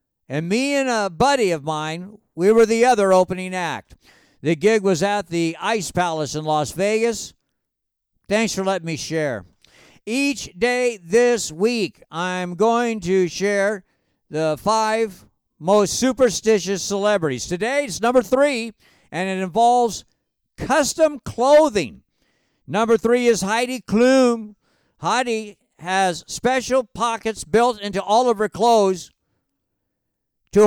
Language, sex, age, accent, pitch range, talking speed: English, male, 50-69, American, 180-235 Hz, 130 wpm